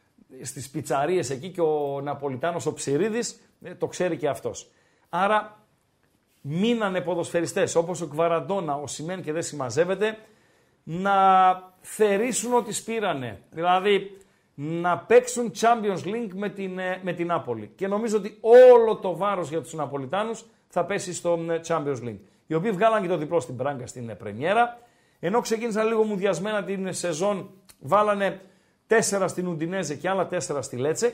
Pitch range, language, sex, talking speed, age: 160-210 Hz, Greek, male, 145 wpm, 50-69